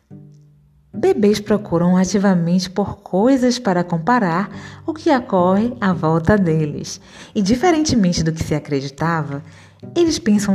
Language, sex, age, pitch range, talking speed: Portuguese, female, 20-39, 165-235 Hz, 120 wpm